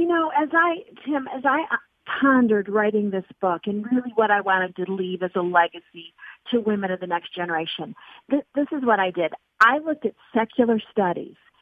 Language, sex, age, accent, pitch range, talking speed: English, female, 50-69, American, 185-245 Hz, 190 wpm